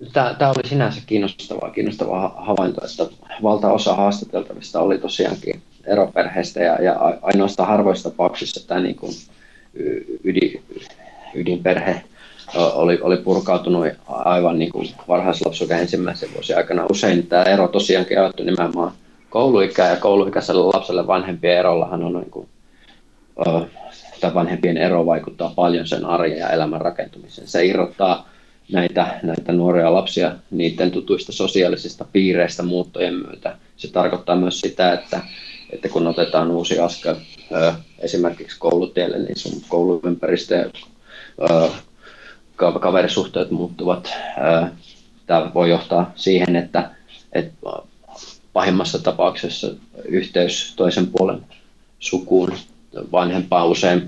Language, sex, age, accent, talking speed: Finnish, male, 30-49, native, 105 wpm